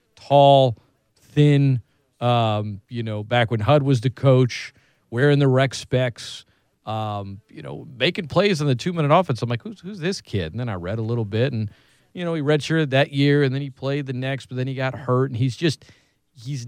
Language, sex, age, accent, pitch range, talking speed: English, male, 40-59, American, 115-140 Hz, 210 wpm